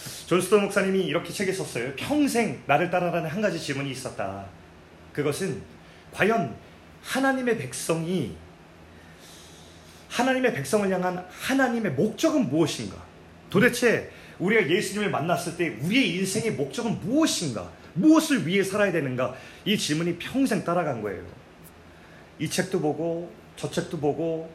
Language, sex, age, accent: Korean, male, 30-49, native